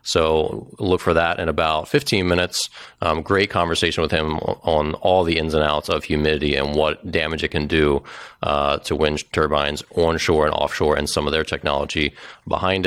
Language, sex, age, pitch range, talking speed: English, male, 30-49, 80-95 Hz, 185 wpm